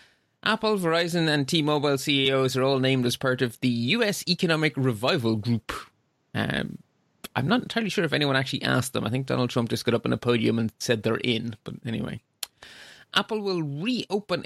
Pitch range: 125-175 Hz